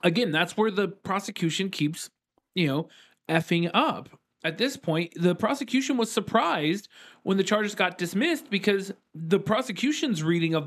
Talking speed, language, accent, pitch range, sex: 150 wpm, English, American, 150-195 Hz, male